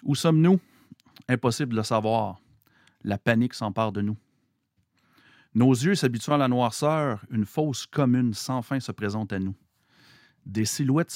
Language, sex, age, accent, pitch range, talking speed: French, male, 40-59, Canadian, 110-135 Hz, 150 wpm